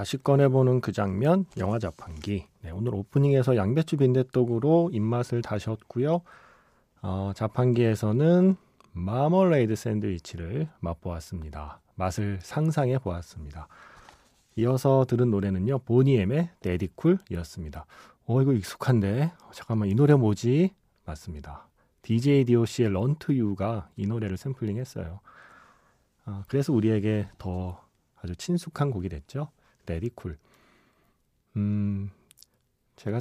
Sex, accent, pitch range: male, native, 100-135 Hz